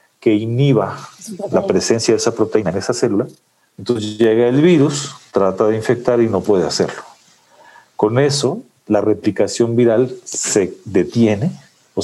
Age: 40-59